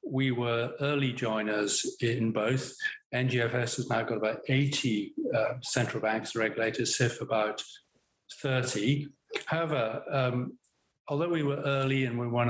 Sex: male